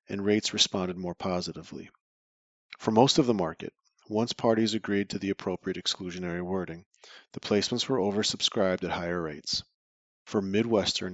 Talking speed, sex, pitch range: 145 wpm, male, 90-105 Hz